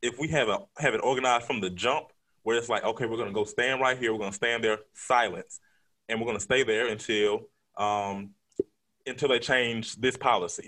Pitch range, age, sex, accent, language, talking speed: 115-160 Hz, 20-39, male, American, English, 210 wpm